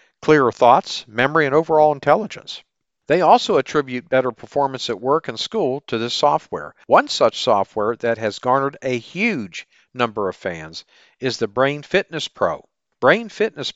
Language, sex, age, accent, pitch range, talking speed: English, male, 50-69, American, 115-150 Hz, 155 wpm